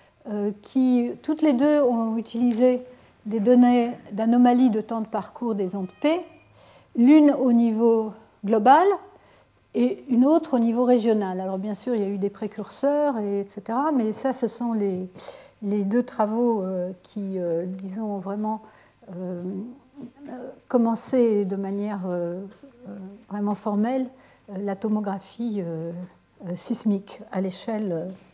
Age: 60-79